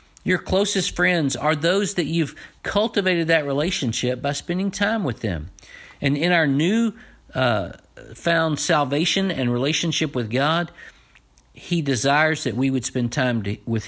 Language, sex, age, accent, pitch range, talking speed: English, male, 50-69, American, 115-155 Hz, 145 wpm